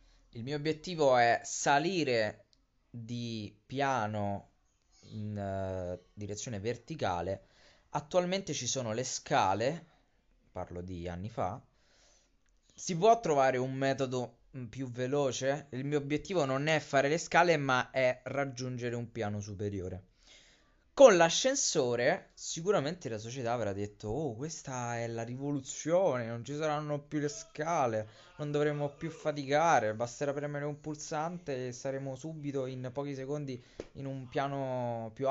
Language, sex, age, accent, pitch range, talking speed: Italian, male, 20-39, native, 110-150 Hz, 130 wpm